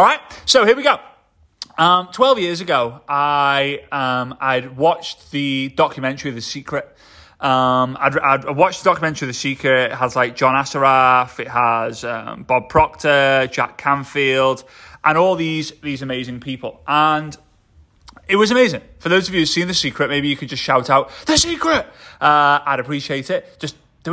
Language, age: English, 20-39